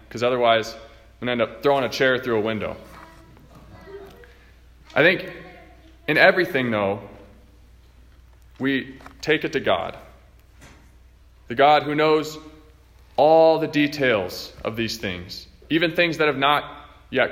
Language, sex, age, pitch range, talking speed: English, male, 20-39, 100-145 Hz, 135 wpm